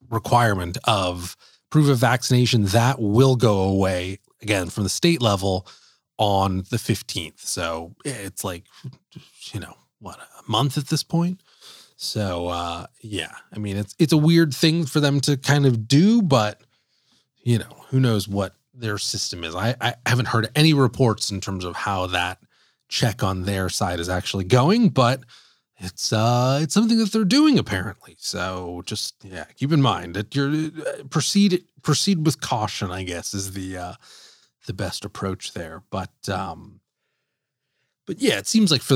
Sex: male